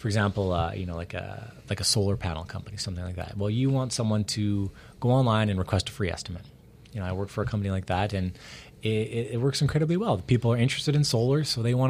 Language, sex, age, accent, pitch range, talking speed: English, male, 30-49, American, 100-130 Hz, 250 wpm